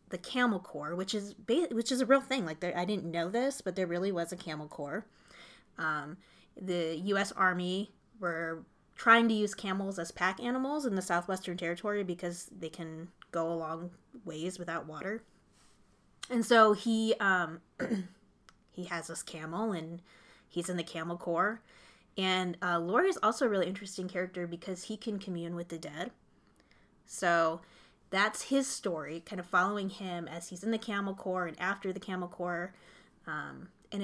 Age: 20-39